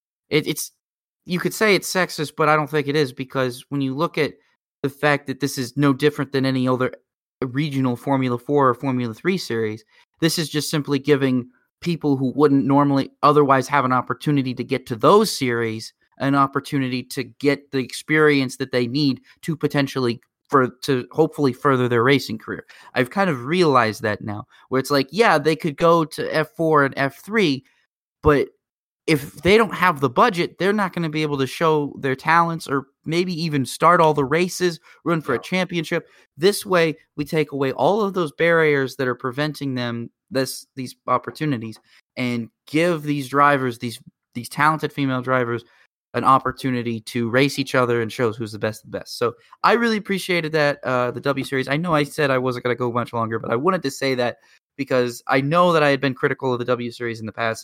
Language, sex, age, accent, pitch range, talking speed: English, male, 30-49, American, 125-155 Hz, 205 wpm